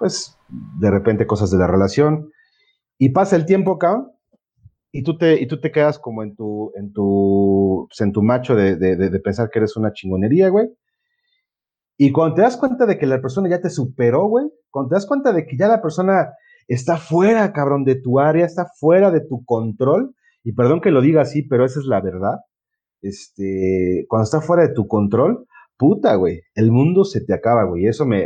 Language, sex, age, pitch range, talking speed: Spanish, male, 40-59, 105-160 Hz, 205 wpm